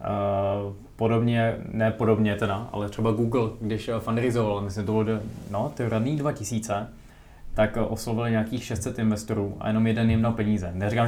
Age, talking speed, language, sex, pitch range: 20-39, 145 wpm, Czech, male, 105-115 Hz